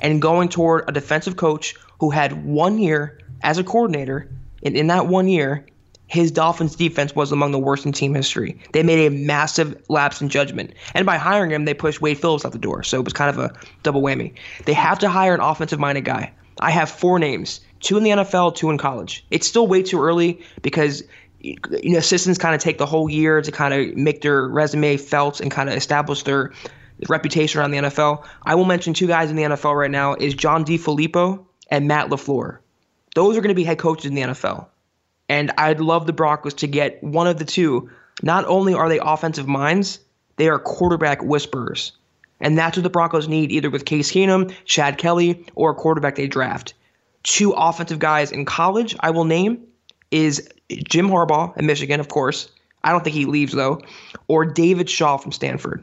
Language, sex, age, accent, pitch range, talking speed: English, male, 20-39, American, 145-170 Hz, 205 wpm